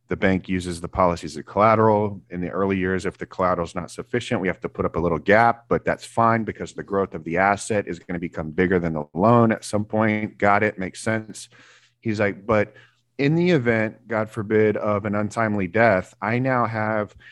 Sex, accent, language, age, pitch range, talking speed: male, American, English, 30-49, 95-120 Hz, 220 wpm